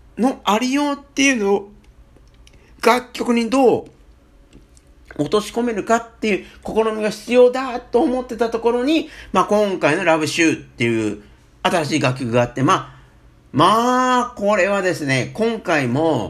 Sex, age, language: male, 50-69, Japanese